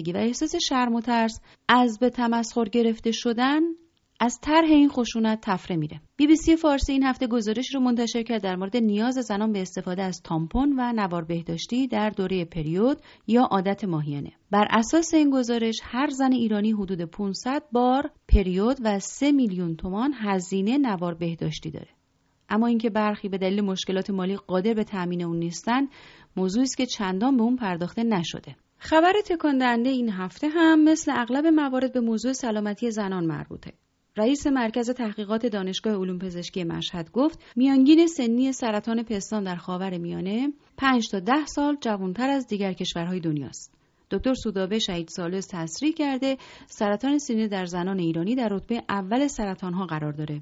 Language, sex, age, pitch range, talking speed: Persian, female, 30-49, 185-255 Hz, 160 wpm